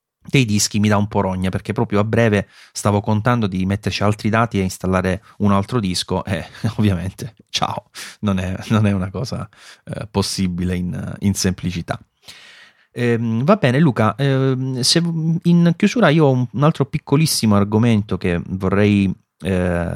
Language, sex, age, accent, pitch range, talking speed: Italian, male, 30-49, native, 95-120 Hz, 160 wpm